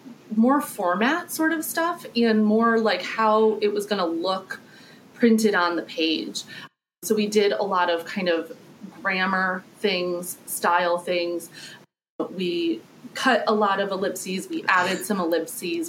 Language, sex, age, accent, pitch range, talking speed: English, female, 30-49, American, 180-225 Hz, 150 wpm